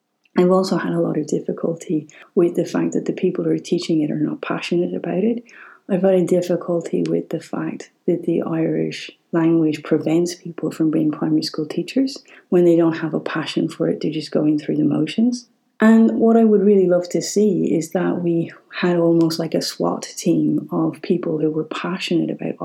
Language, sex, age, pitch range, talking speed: English, female, 30-49, 160-185 Hz, 205 wpm